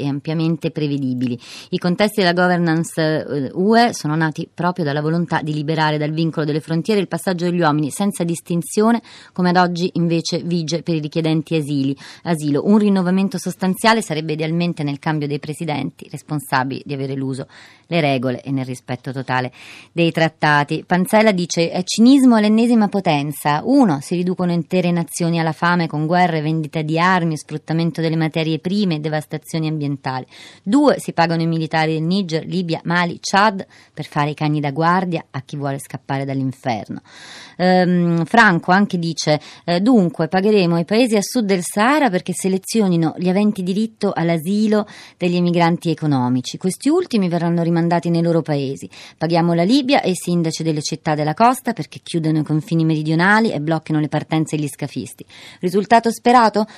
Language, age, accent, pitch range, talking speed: Italian, 30-49, native, 150-185 Hz, 160 wpm